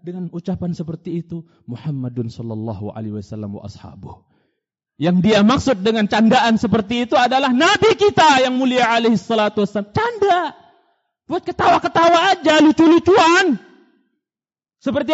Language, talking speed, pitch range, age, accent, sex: Indonesian, 125 wpm, 170-265 Hz, 30-49, native, male